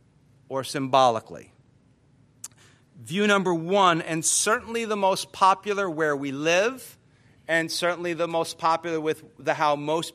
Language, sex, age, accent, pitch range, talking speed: English, male, 50-69, American, 135-170 Hz, 130 wpm